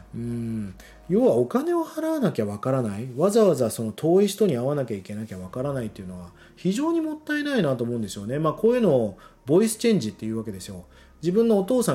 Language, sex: Japanese, male